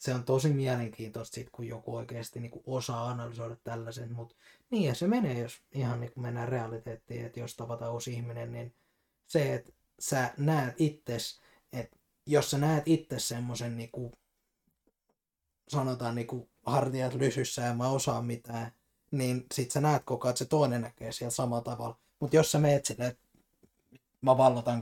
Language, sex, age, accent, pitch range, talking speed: Finnish, male, 20-39, native, 115-130 Hz, 165 wpm